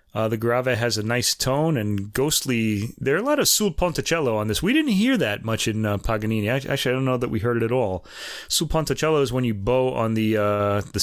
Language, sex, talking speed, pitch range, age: English, male, 250 wpm, 105-135 Hz, 30-49